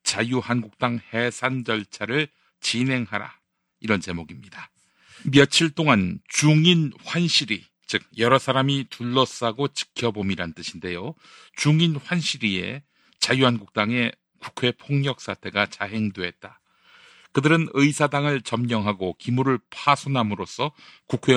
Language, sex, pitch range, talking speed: English, male, 115-145 Hz, 80 wpm